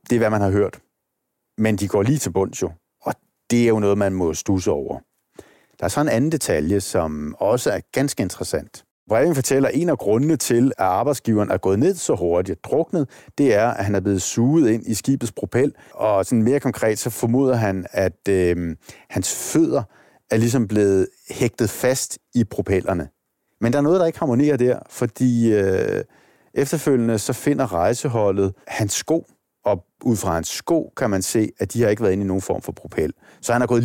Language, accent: Danish, native